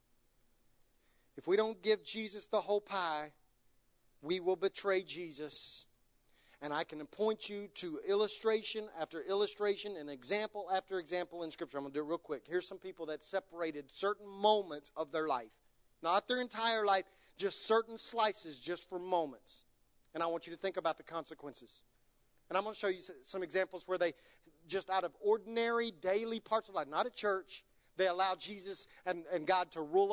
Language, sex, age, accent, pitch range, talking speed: English, male, 40-59, American, 155-195 Hz, 185 wpm